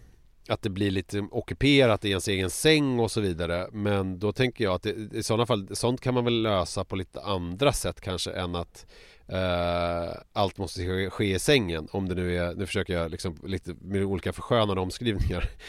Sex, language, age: male, Swedish, 30-49